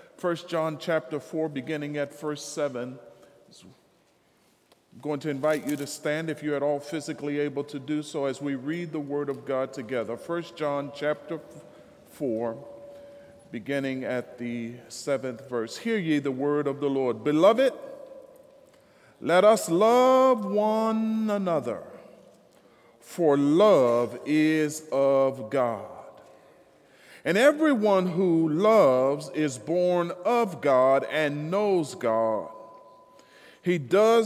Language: English